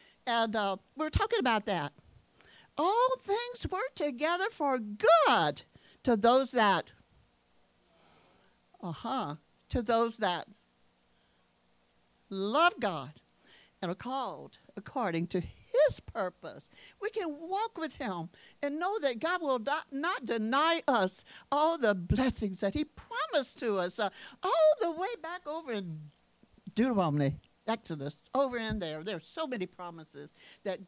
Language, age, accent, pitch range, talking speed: English, 60-79, American, 180-280 Hz, 130 wpm